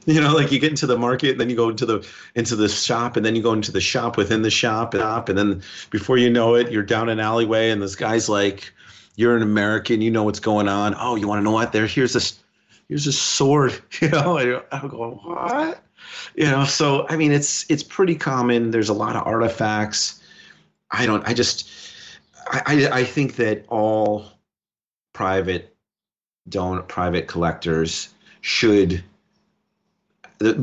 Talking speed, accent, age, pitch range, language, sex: 190 wpm, American, 30-49, 90-120 Hz, English, male